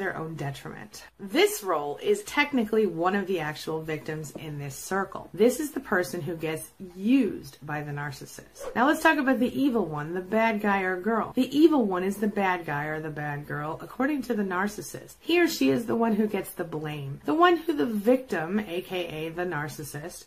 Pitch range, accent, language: 160-240 Hz, American, English